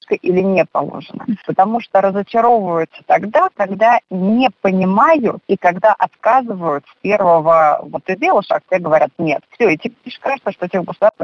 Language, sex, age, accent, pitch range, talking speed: Russian, female, 30-49, native, 175-230 Hz, 155 wpm